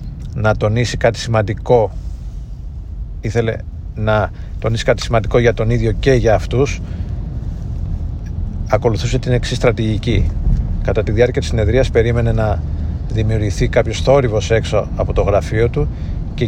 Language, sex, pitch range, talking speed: Greek, male, 105-125 Hz, 125 wpm